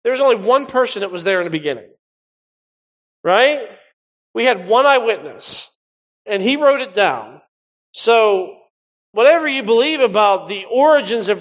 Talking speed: 155 wpm